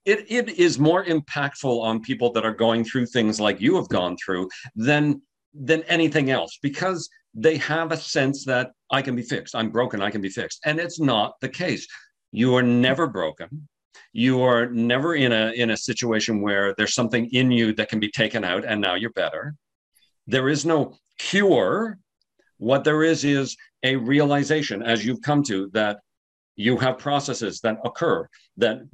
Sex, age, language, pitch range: male, 50-69, English, 110-140 Hz